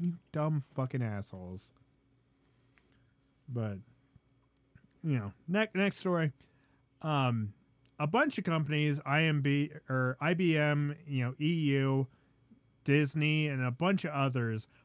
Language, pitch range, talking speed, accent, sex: English, 130-175 Hz, 115 wpm, American, male